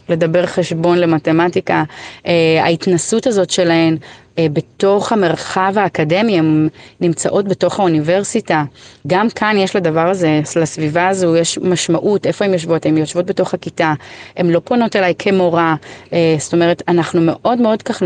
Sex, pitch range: female, 160-195 Hz